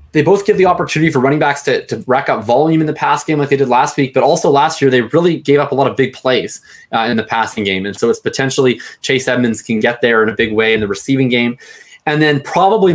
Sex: male